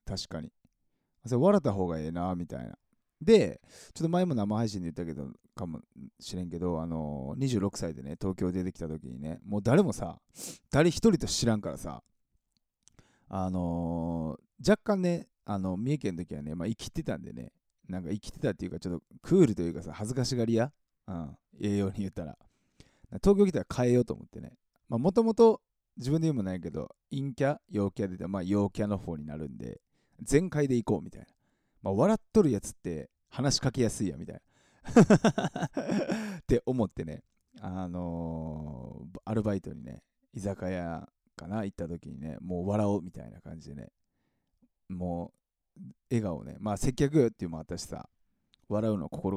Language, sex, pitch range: Japanese, male, 85-125 Hz